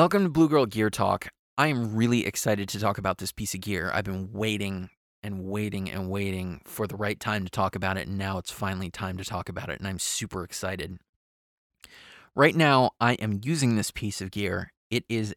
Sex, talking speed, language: male, 220 wpm, English